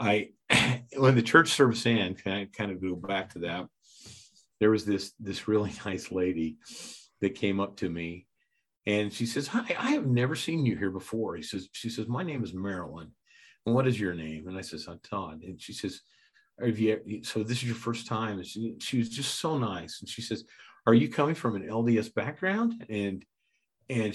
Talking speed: 210 wpm